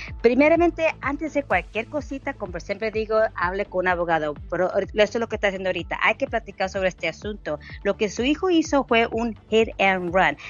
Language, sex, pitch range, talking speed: Spanish, female, 175-235 Hz, 205 wpm